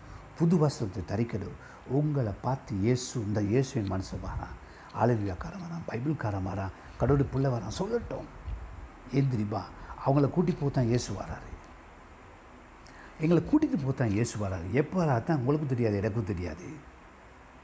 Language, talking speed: Tamil, 120 wpm